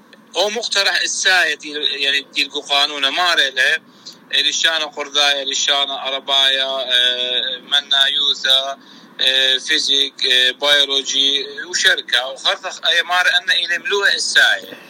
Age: 50-69